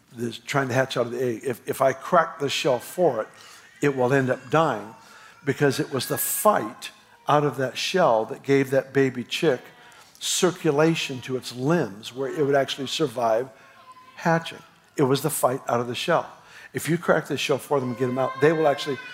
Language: English